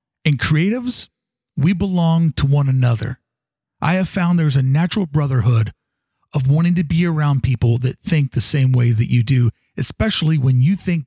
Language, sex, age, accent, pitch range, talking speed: English, male, 40-59, American, 130-165 Hz, 175 wpm